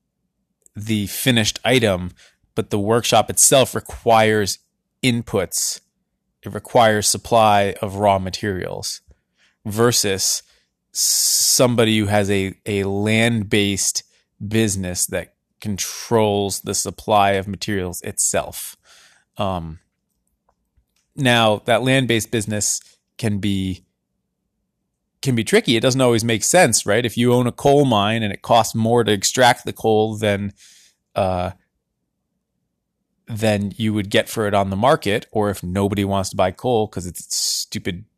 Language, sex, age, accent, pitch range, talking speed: English, male, 20-39, American, 100-115 Hz, 130 wpm